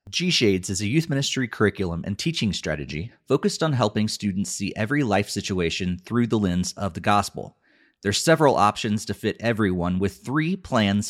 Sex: male